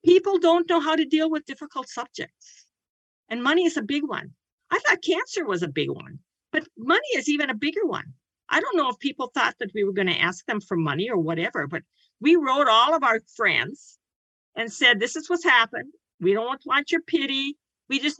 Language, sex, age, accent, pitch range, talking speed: English, female, 50-69, American, 200-310 Hz, 220 wpm